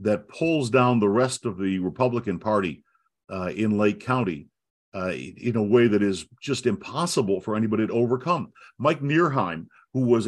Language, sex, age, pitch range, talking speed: English, male, 60-79, 105-140 Hz, 170 wpm